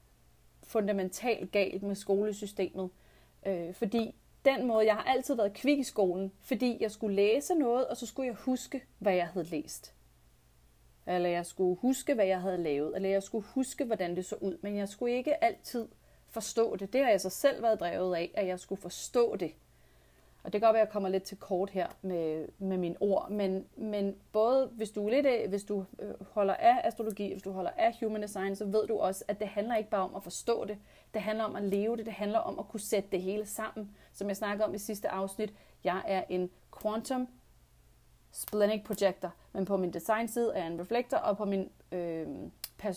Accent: native